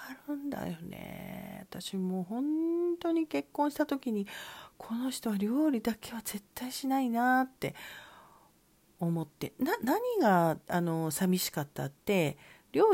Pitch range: 160-250 Hz